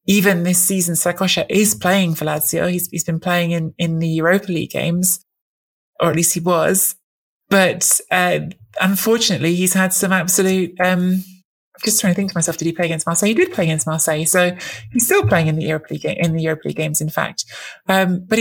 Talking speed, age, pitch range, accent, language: 215 wpm, 20-39, 165-190 Hz, British, English